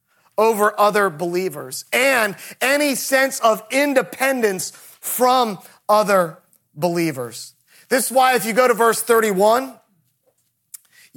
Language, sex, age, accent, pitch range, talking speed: English, male, 30-49, American, 195-255 Hz, 105 wpm